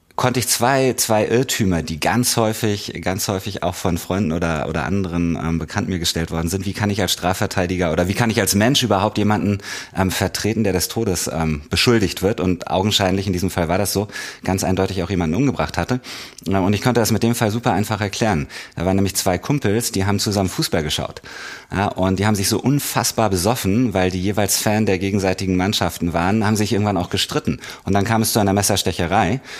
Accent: German